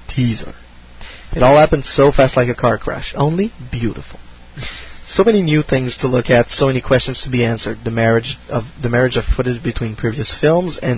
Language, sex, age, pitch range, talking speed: English, male, 20-39, 110-130 Hz, 195 wpm